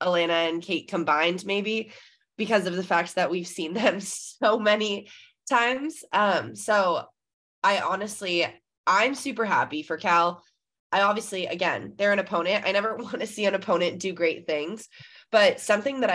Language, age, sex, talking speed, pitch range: English, 20-39, female, 165 wpm, 165-200 Hz